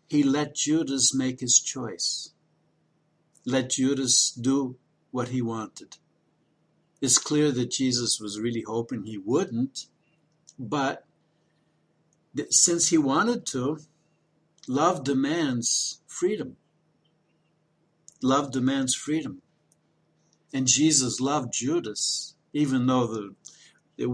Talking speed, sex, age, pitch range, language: 95 wpm, male, 60-79, 125-160 Hz, English